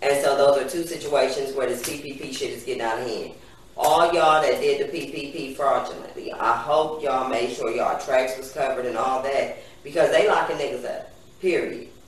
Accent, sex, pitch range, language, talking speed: American, female, 140-205 Hz, English, 190 wpm